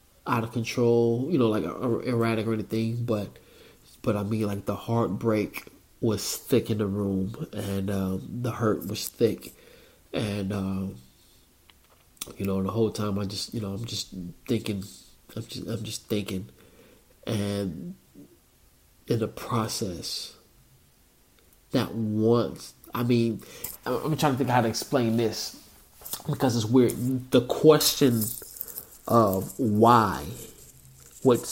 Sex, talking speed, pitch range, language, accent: male, 135 wpm, 100-125 Hz, English, American